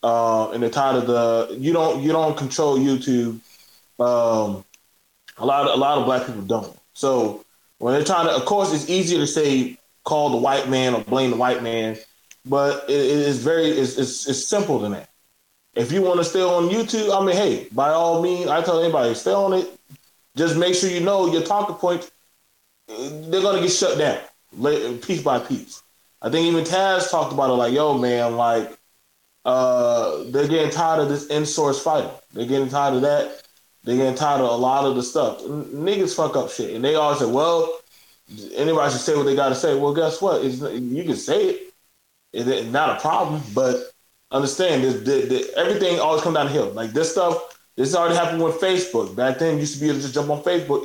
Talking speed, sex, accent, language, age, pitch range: 210 wpm, male, American, English, 20-39, 130-175 Hz